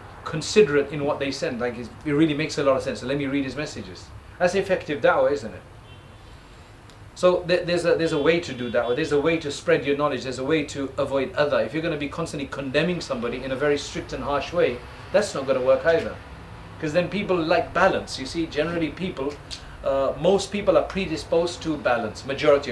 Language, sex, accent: English, male, South African